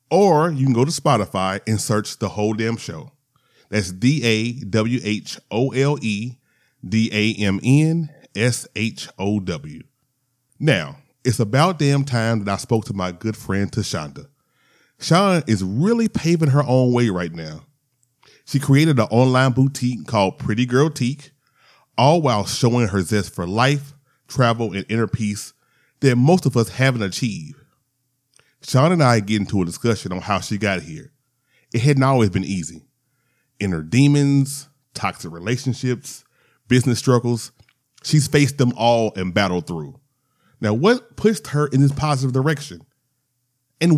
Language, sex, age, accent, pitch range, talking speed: English, male, 30-49, American, 110-145 Hz, 140 wpm